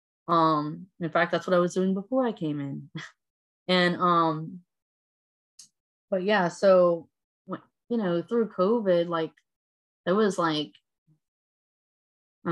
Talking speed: 125 wpm